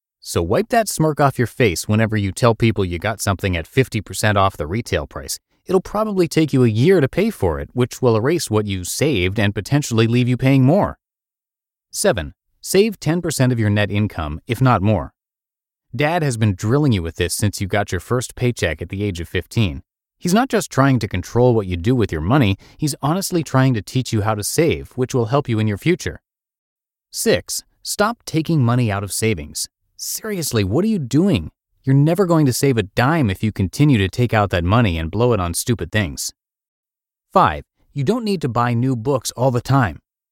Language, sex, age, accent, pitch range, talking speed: English, male, 30-49, American, 100-140 Hz, 210 wpm